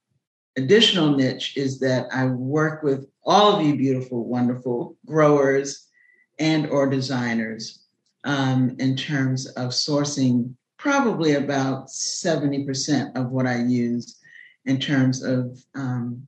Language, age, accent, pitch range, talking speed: English, 50-69, American, 130-150 Hz, 120 wpm